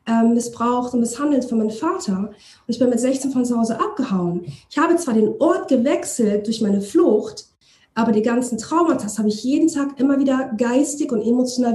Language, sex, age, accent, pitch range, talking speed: German, female, 40-59, German, 220-290 Hz, 190 wpm